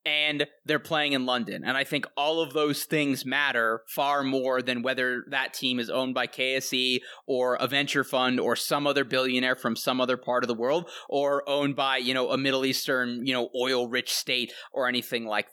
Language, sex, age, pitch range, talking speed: English, male, 20-39, 125-140 Hz, 210 wpm